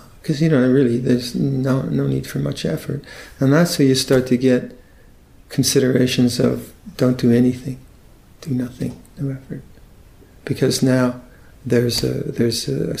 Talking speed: 150 wpm